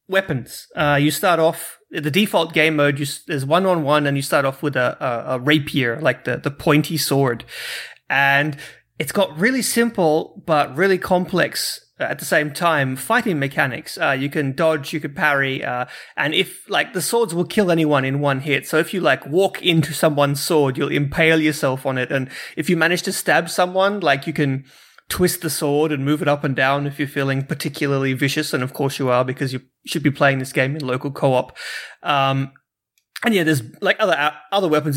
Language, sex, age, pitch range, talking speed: English, male, 30-49, 135-165 Hz, 205 wpm